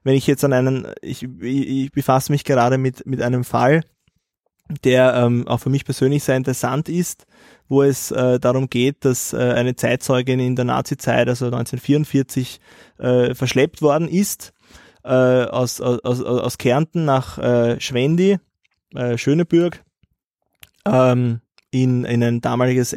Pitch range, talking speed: 125-140 Hz, 150 wpm